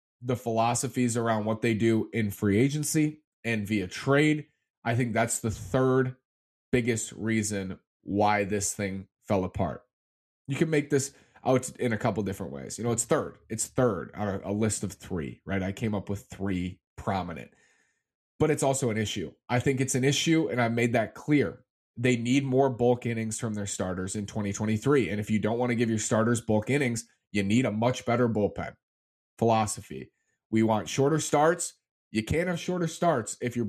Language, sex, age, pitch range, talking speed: English, male, 30-49, 105-125 Hz, 190 wpm